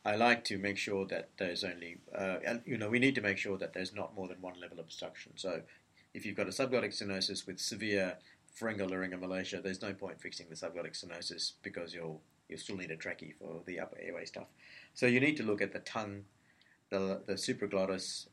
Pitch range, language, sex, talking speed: 95-110 Hz, English, male, 220 wpm